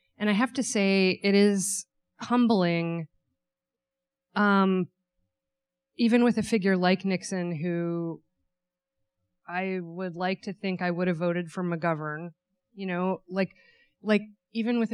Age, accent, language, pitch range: 20-39, American, English, 165-190 Hz